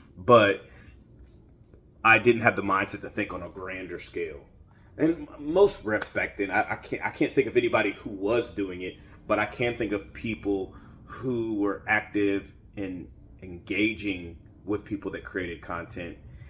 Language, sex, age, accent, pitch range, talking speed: English, male, 30-49, American, 95-110 Hz, 165 wpm